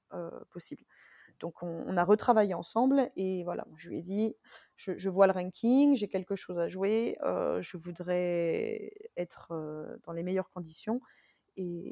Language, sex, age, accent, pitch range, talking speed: French, female, 20-39, French, 190-230 Hz, 170 wpm